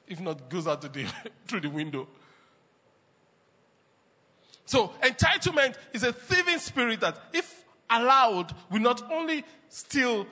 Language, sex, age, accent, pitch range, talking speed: English, male, 40-59, Nigerian, 180-260 Hz, 130 wpm